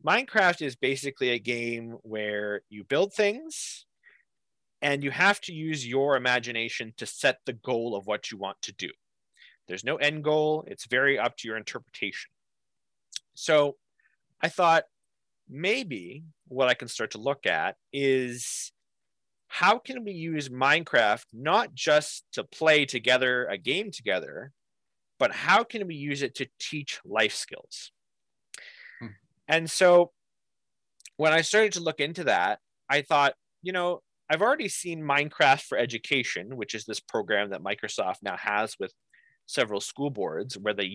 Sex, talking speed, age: male, 150 wpm, 30-49